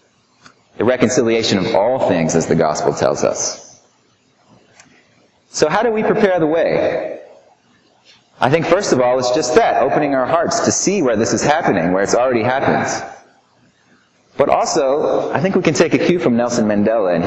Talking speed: 175 wpm